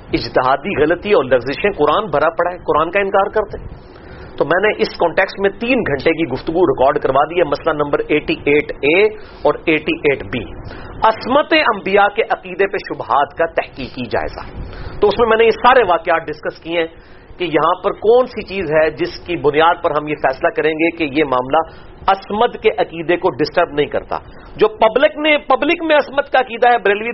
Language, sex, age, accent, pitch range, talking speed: English, male, 40-59, Indian, 170-245 Hz, 115 wpm